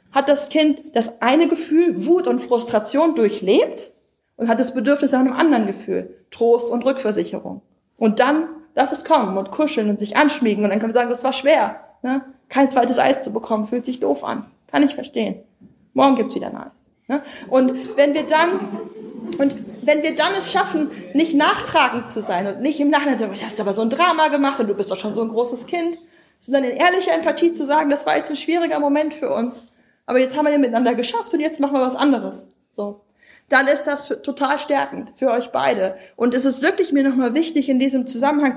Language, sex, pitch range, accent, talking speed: German, female, 230-300 Hz, German, 210 wpm